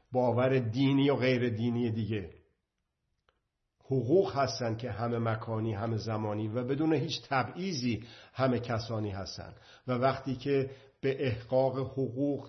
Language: Persian